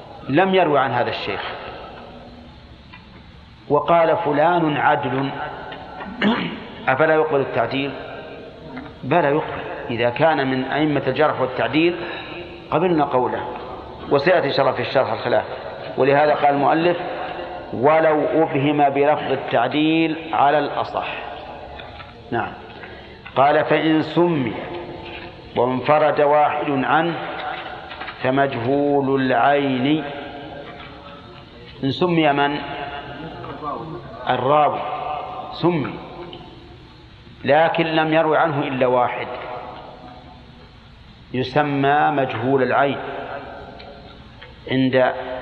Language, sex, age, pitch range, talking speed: Arabic, male, 40-59, 130-155 Hz, 75 wpm